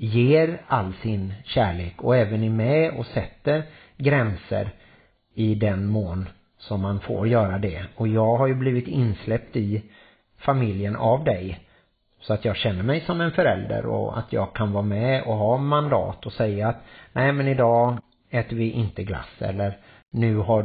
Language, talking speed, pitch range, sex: Swedish, 170 wpm, 105-120 Hz, male